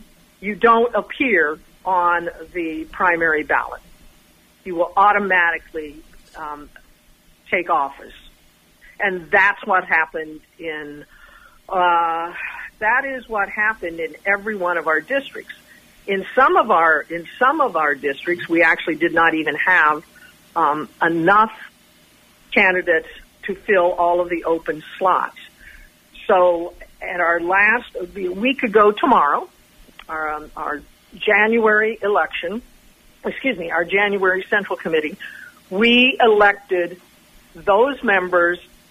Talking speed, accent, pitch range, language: 115 wpm, American, 165-210 Hz, English